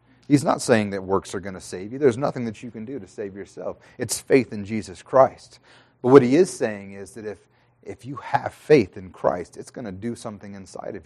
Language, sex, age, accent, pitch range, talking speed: English, male, 30-49, American, 120-155 Hz, 245 wpm